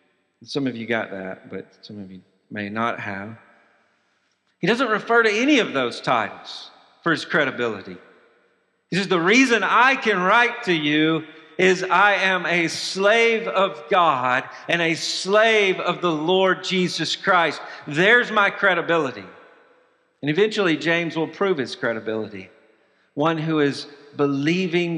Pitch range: 140-185 Hz